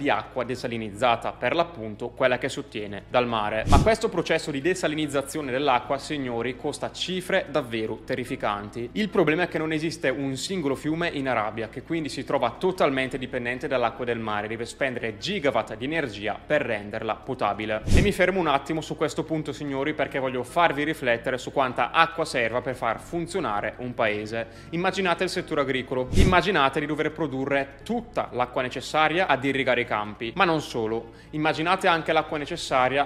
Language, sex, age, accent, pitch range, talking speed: Italian, male, 20-39, native, 120-155 Hz, 170 wpm